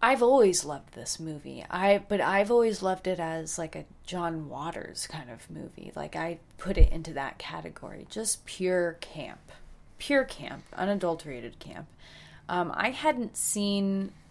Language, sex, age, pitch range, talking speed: English, female, 30-49, 155-205 Hz, 155 wpm